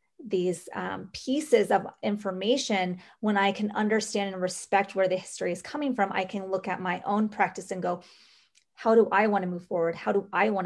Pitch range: 190-235 Hz